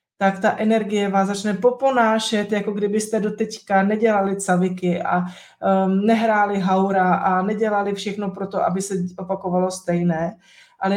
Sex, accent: female, native